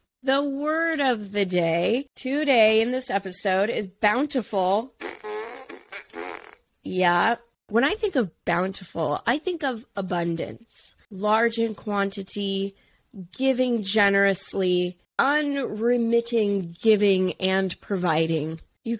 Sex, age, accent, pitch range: female, 20-39, American, 190-245 Hz